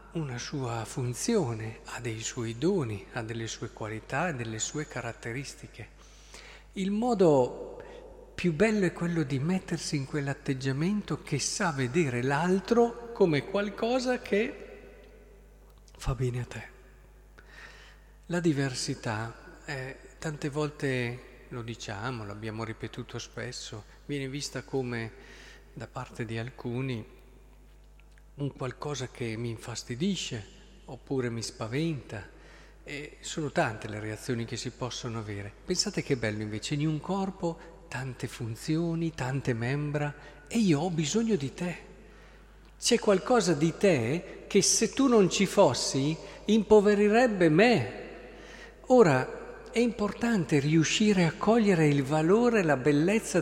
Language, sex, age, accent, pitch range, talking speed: Italian, male, 50-69, native, 120-190 Hz, 125 wpm